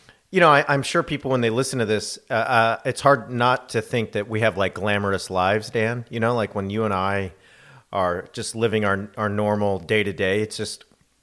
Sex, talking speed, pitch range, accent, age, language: male, 230 wpm, 100-120 Hz, American, 40-59, English